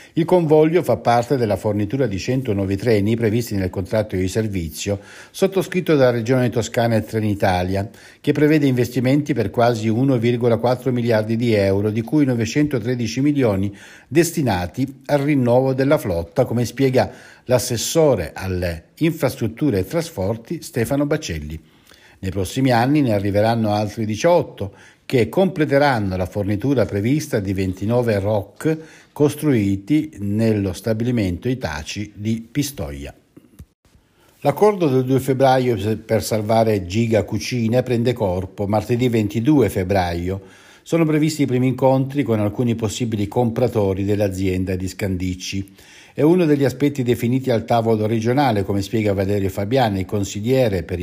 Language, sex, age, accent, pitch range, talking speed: Italian, male, 60-79, native, 100-135 Hz, 125 wpm